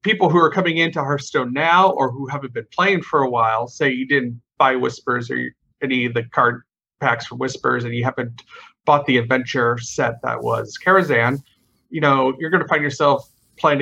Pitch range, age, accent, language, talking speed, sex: 125-150 Hz, 40-59, American, English, 210 wpm, male